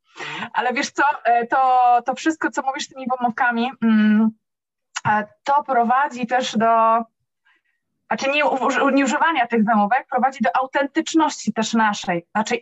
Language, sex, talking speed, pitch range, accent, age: Polish, female, 125 wpm, 225-295 Hz, native, 20-39